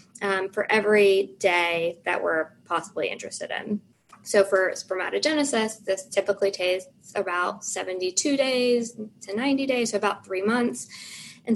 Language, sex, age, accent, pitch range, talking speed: English, female, 20-39, American, 190-230 Hz, 135 wpm